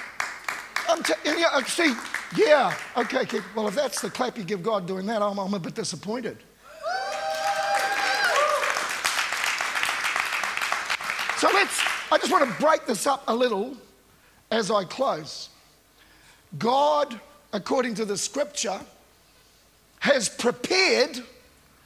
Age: 50-69